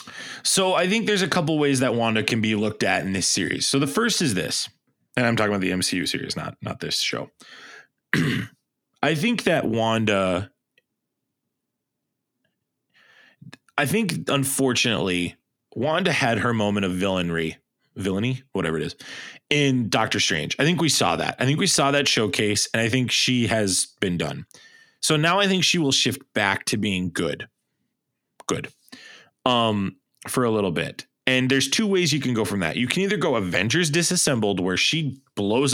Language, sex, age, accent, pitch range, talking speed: English, male, 20-39, American, 100-145 Hz, 175 wpm